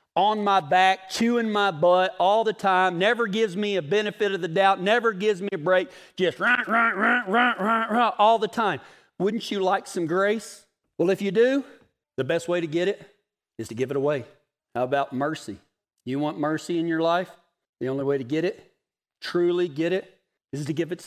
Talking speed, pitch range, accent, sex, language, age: 215 wpm, 180-245 Hz, American, male, English, 40-59